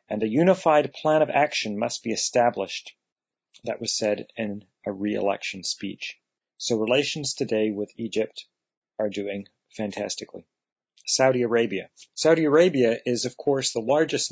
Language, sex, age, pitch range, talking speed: English, male, 40-59, 110-140 Hz, 140 wpm